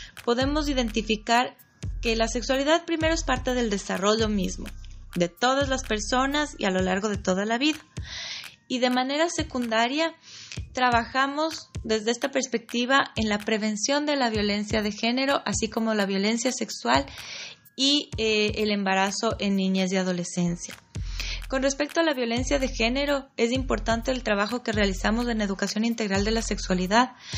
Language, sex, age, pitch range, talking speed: Spanish, female, 20-39, 215-270 Hz, 155 wpm